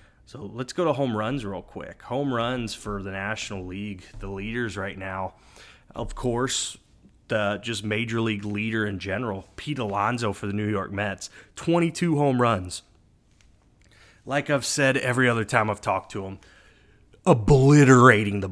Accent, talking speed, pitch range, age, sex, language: American, 160 wpm, 100-120 Hz, 30-49, male, English